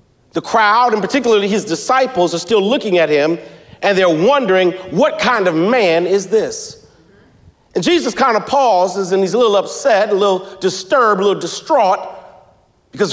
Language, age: English, 40-59